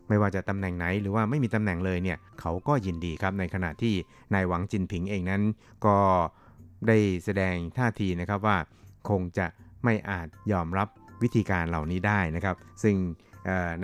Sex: male